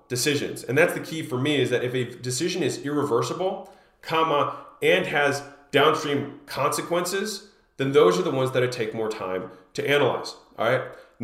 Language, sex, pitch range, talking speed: English, male, 130-180 Hz, 175 wpm